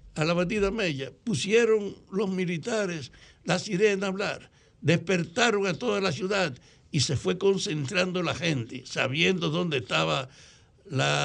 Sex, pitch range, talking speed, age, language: male, 130-185 Hz, 140 wpm, 60-79, Spanish